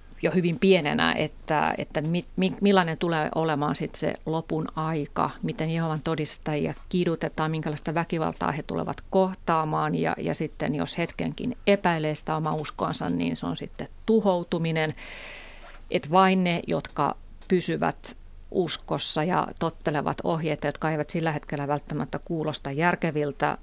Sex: female